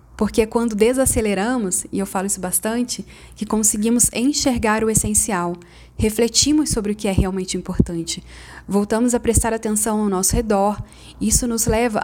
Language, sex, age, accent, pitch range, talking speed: Portuguese, female, 20-39, Brazilian, 195-240 Hz, 150 wpm